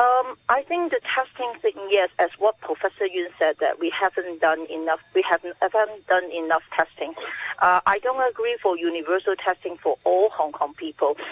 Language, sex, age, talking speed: English, female, 40-59, 185 wpm